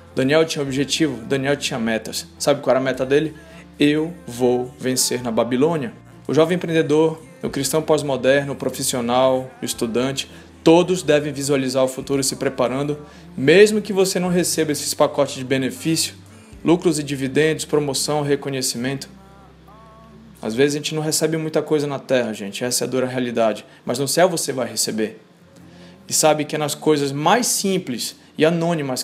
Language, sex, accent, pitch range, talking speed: Portuguese, male, Brazilian, 130-155 Hz, 165 wpm